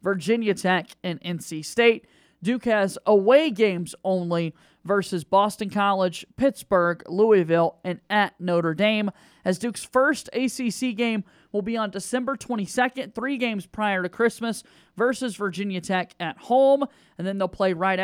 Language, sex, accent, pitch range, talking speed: English, male, American, 180-220 Hz, 145 wpm